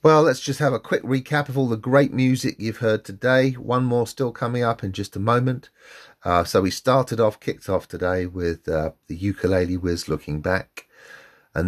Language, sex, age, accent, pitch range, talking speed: English, male, 40-59, British, 90-115 Hz, 205 wpm